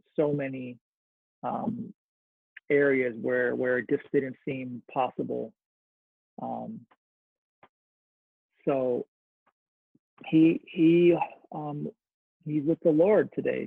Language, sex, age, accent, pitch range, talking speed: English, male, 40-59, American, 125-165 Hz, 90 wpm